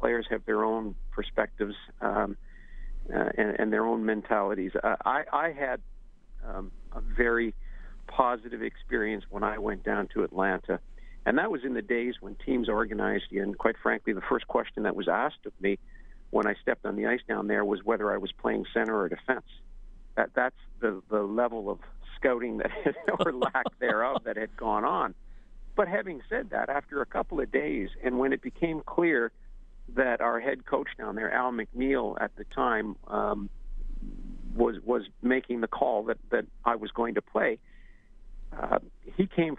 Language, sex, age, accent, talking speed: English, male, 50-69, American, 180 wpm